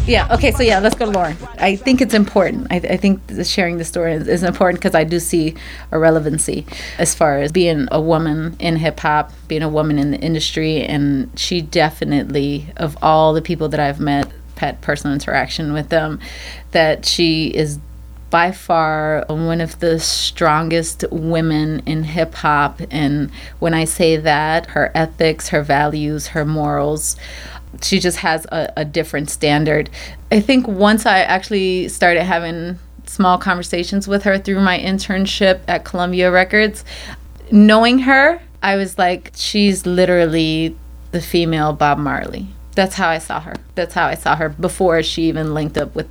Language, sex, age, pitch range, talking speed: English, female, 30-49, 150-180 Hz, 170 wpm